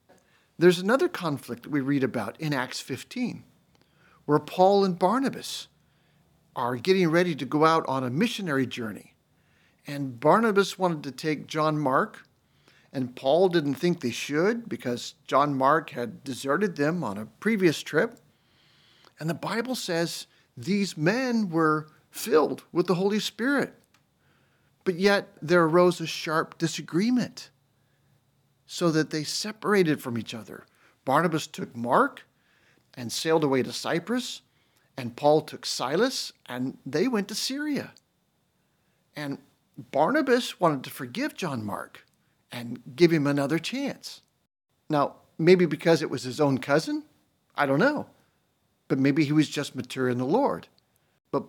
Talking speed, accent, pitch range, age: 145 wpm, American, 135-185 Hz, 50-69